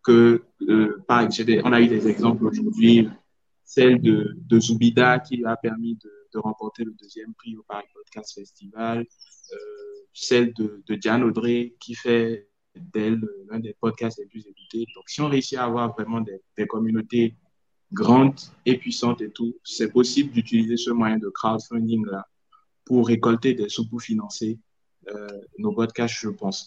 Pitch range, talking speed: 105-125 Hz, 170 wpm